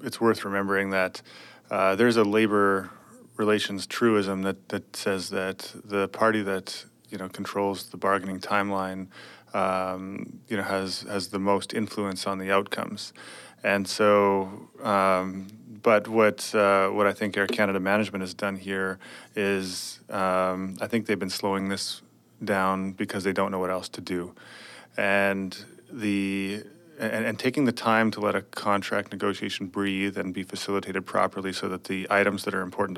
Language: English